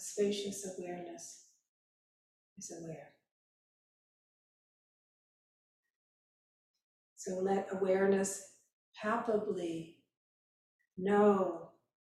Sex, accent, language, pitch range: female, American, English, 165-210 Hz